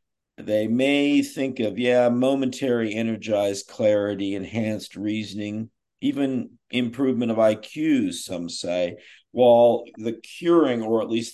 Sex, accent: male, American